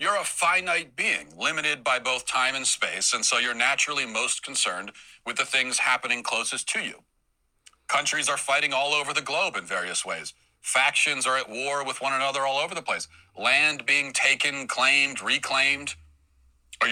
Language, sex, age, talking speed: English, male, 40-59, 175 wpm